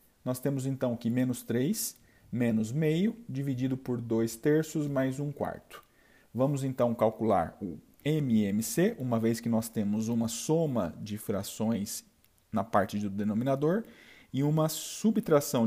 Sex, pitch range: male, 115-150 Hz